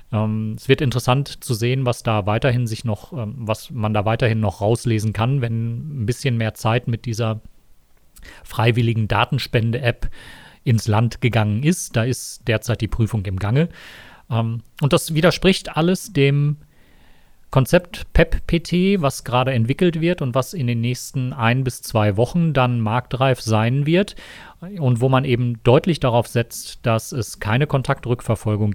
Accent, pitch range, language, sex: German, 110-135 Hz, German, male